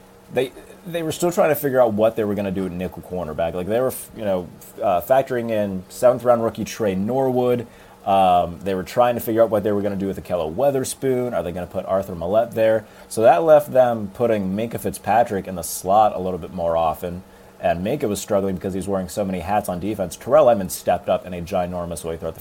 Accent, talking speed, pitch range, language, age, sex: American, 240 wpm, 95-110 Hz, English, 30-49, male